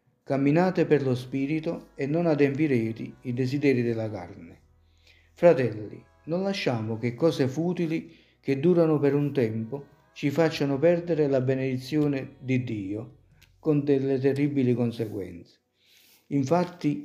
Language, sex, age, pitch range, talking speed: Italian, male, 50-69, 120-160 Hz, 120 wpm